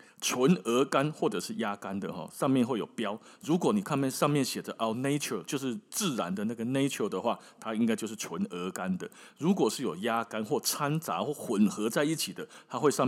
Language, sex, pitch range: Chinese, male, 115-180 Hz